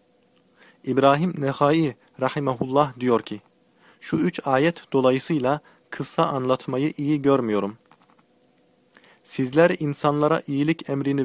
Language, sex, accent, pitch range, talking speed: Turkish, male, native, 130-160 Hz, 90 wpm